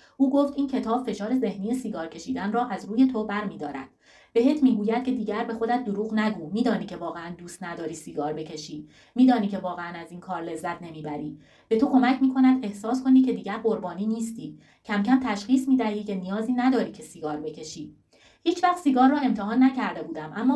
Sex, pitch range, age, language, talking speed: female, 195-255 Hz, 30-49, Persian, 200 wpm